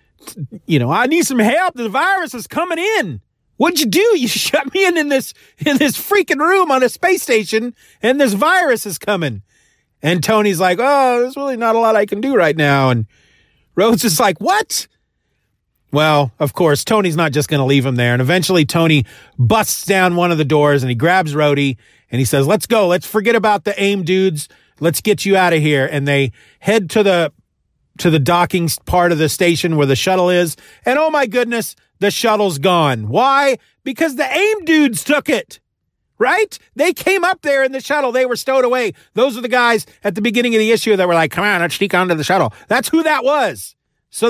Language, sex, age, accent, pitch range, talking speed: English, male, 40-59, American, 165-265 Hz, 215 wpm